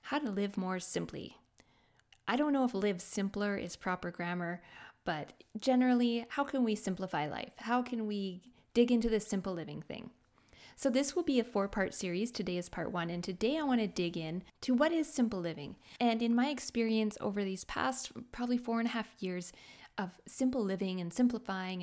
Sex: female